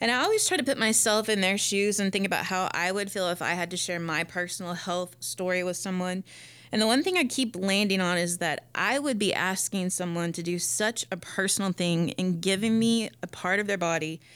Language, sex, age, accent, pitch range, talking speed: English, female, 20-39, American, 180-225 Hz, 240 wpm